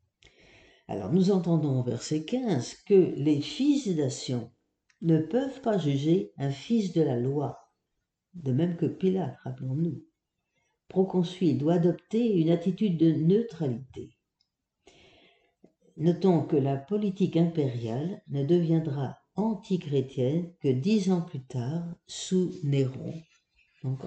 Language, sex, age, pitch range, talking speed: French, female, 60-79, 130-185 Hz, 115 wpm